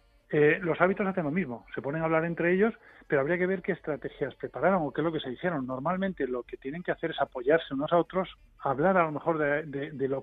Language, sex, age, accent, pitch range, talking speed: Spanish, male, 40-59, Spanish, 135-170 Hz, 265 wpm